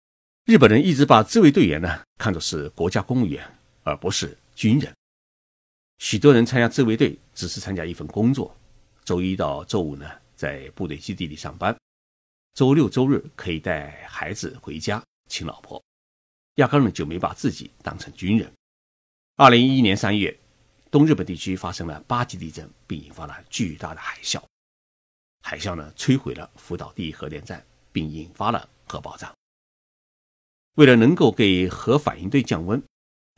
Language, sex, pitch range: Chinese, male, 90-130 Hz